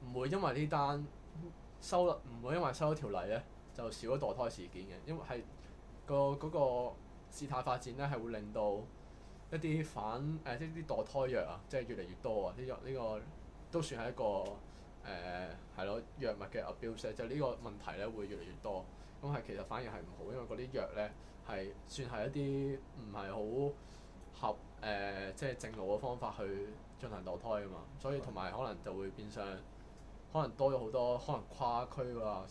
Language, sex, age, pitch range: Chinese, male, 20-39, 105-140 Hz